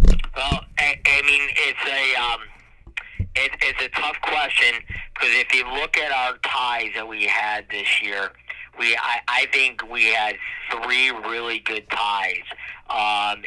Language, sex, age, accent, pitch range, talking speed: English, male, 50-69, American, 100-110 Hz, 155 wpm